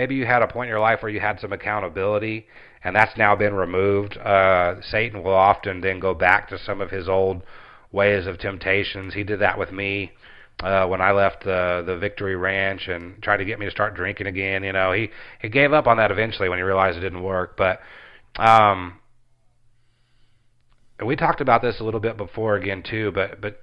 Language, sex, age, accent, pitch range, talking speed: English, male, 30-49, American, 95-115 Hz, 215 wpm